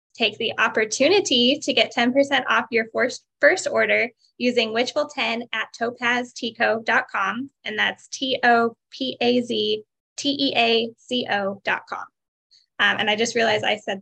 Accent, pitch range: American, 210-245 Hz